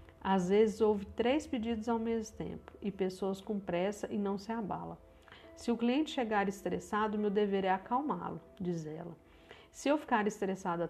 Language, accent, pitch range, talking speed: Portuguese, Brazilian, 185-225 Hz, 170 wpm